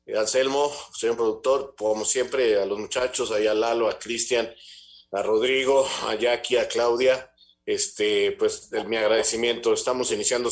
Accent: Mexican